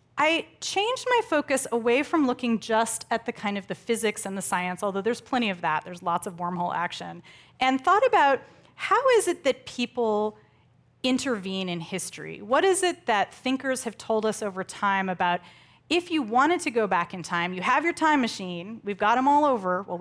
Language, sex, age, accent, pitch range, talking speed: English, female, 30-49, American, 185-255 Hz, 205 wpm